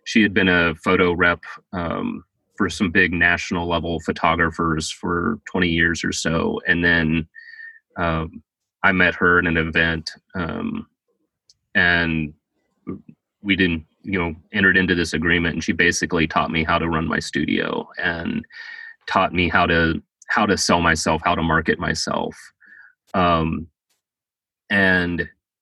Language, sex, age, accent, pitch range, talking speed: English, male, 30-49, American, 85-100 Hz, 145 wpm